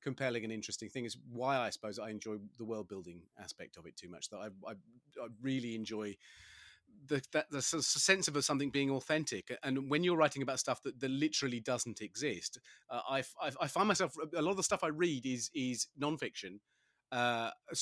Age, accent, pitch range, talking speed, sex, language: 30-49, British, 115-150 Hz, 205 wpm, male, English